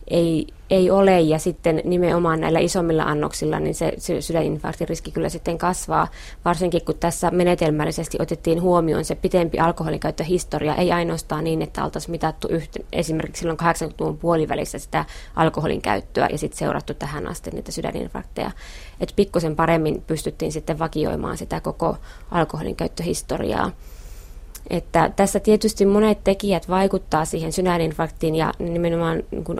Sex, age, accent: female, 20-39, native